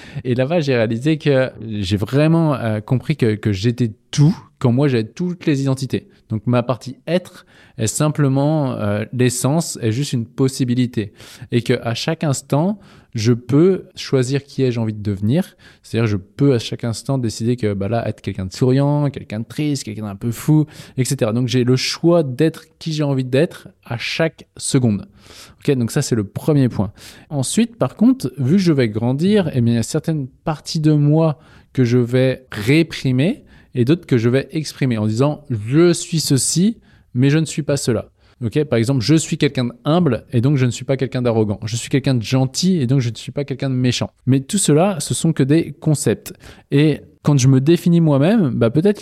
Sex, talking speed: male, 210 wpm